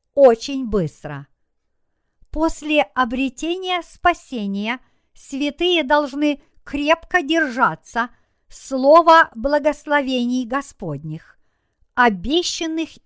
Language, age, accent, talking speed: Russian, 50-69, native, 65 wpm